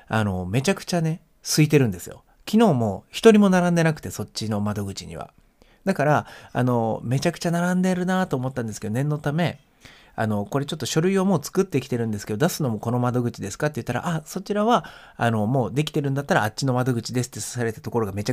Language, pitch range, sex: Japanese, 110-155 Hz, male